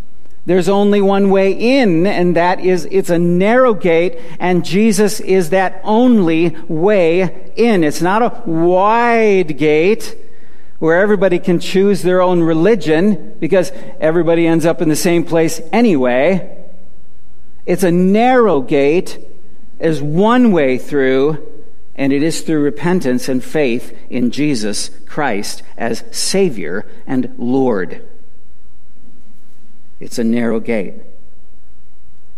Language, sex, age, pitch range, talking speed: English, male, 50-69, 160-220 Hz, 120 wpm